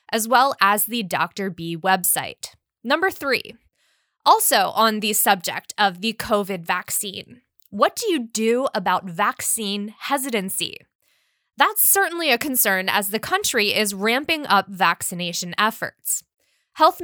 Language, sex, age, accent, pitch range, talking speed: English, female, 10-29, American, 200-280 Hz, 130 wpm